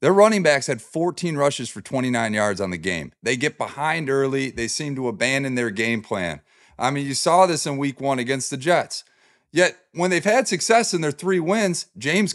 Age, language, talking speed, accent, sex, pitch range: 30-49, English, 215 wpm, American, male, 130-170 Hz